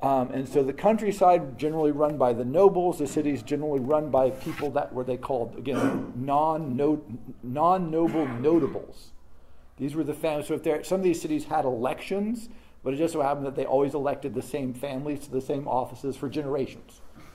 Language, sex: English, male